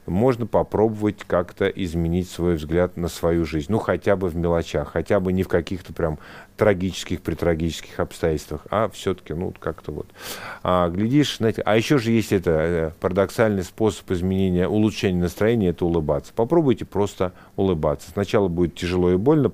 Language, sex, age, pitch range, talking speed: Russian, male, 50-69, 85-100 Hz, 155 wpm